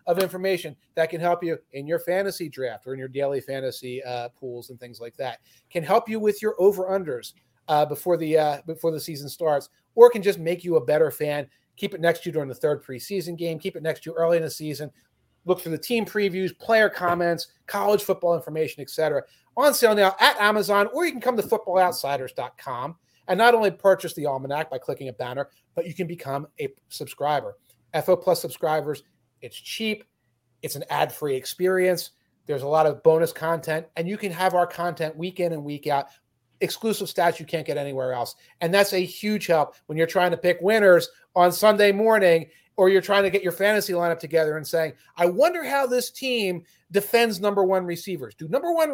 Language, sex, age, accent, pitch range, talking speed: English, male, 30-49, American, 155-200 Hz, 210 wpm